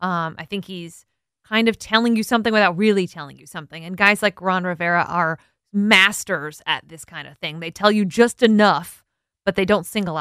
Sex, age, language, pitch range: female, 20-39, English, 175-210 Hz